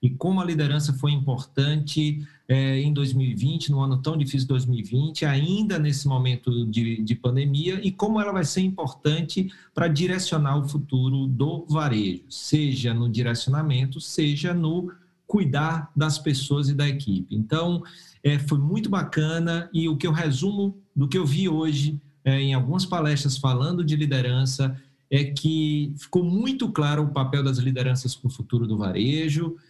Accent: Brazilian